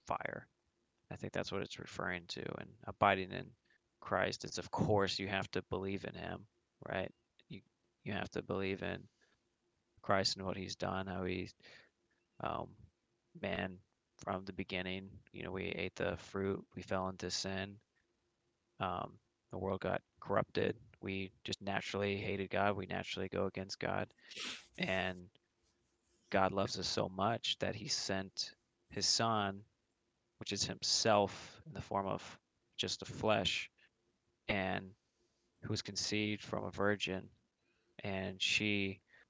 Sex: male